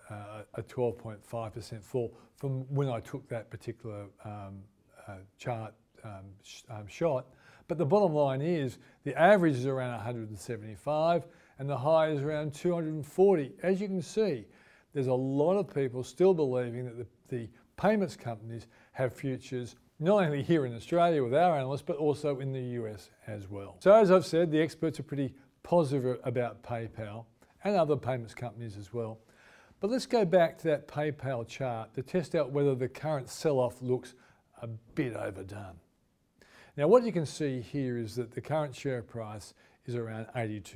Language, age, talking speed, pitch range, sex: English, 40-59, 170 wpm, 115-155 Hz, male